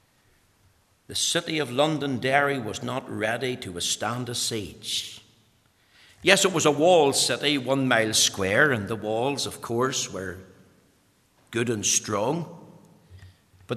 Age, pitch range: 60-79, 110-145 Hz